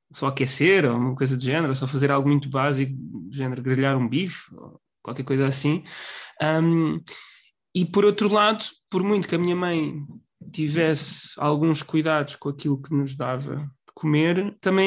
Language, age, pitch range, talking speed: Portuguese, 20-39, 150-190 Hz, 170 wpm